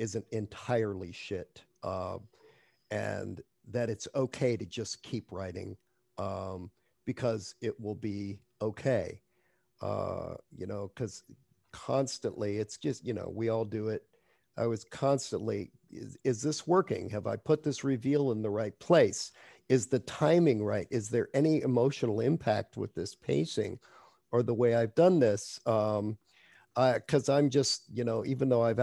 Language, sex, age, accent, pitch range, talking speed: English, male, 50-69, American, 110-130 Hz, 160 wpm